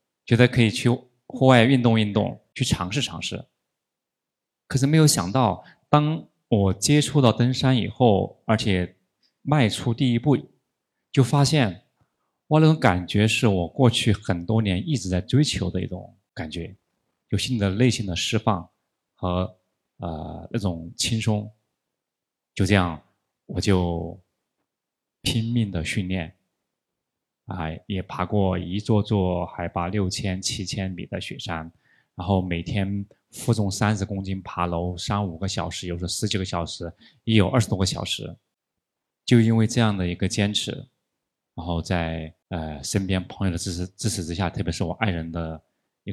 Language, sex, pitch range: Chinese, male, 90-110 Hz